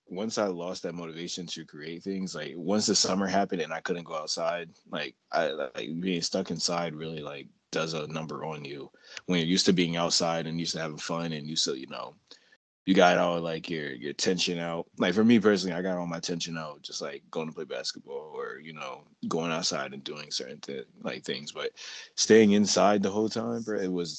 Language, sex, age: English, male, 20-39